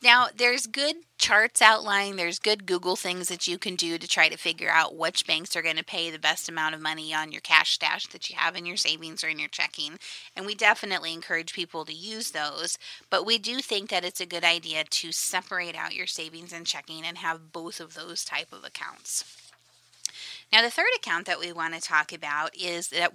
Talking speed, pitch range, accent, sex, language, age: 225 wpm, 165-200 Hz, American, female, English, 30-49